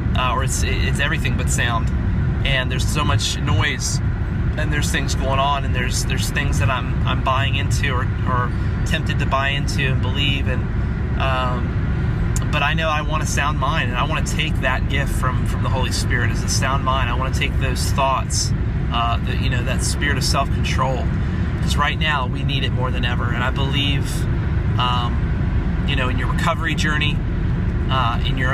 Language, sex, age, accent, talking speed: English, male, 30-49, American, 205 wpm